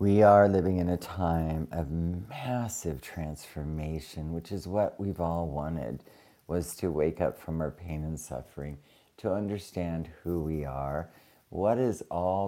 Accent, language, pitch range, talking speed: American, English, 80-100 Hz, 155 wpm